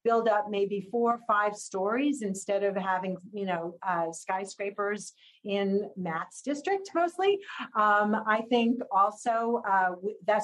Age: 40-59